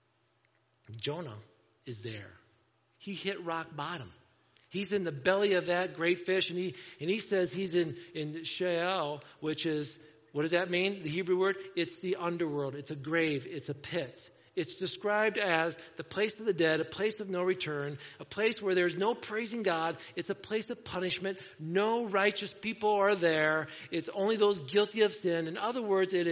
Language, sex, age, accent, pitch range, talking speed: English, male, 50-69, American, 150-195 Hz, 185 wpm